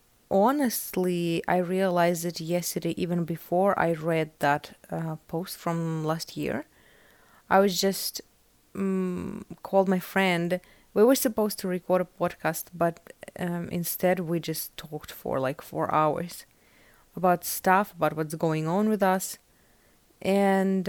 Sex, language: female, English